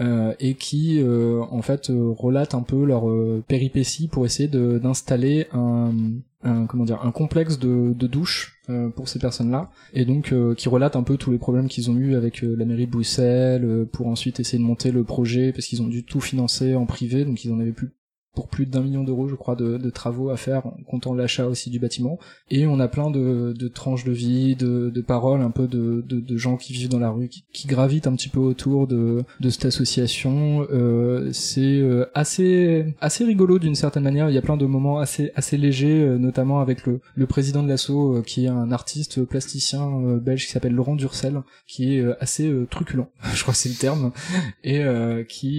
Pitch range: 120-140 Hz